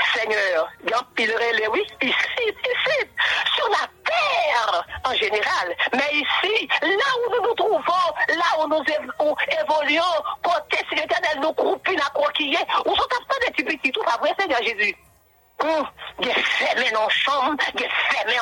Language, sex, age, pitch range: English, female, 50-69, 250-365 Hz